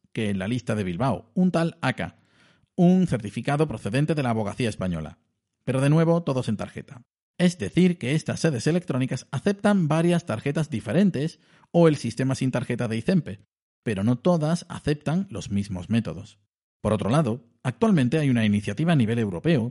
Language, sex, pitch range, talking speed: Spanish, male, 110-165 Hz, 170 wpm